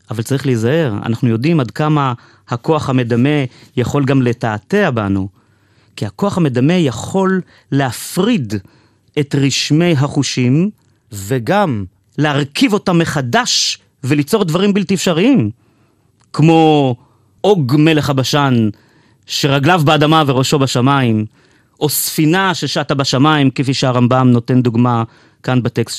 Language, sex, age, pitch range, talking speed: Hebrew, male, 30-49, 115-155 Hz, 110 wpm